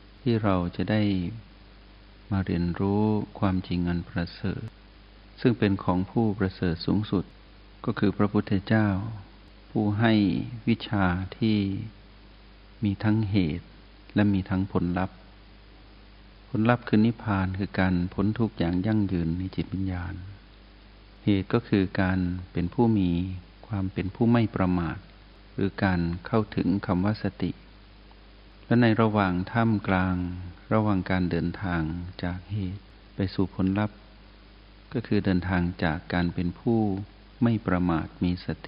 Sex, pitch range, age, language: male, 90-105 Hz, 60-79, Thai